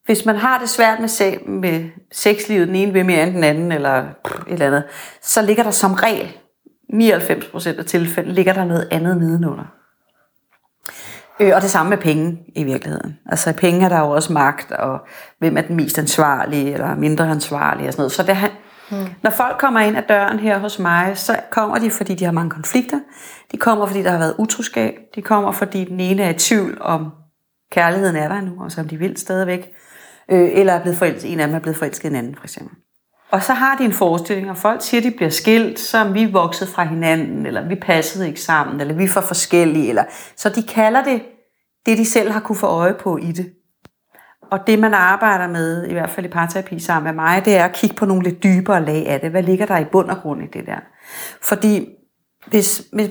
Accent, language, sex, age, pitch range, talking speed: native, Danish, female, 30-49, 165-210 Hz, 220 wpm